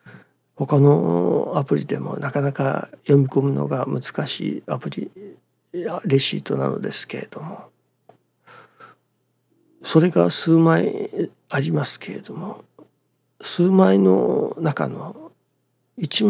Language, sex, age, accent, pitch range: Japanese, male, 60-79, native, 135-190 Hz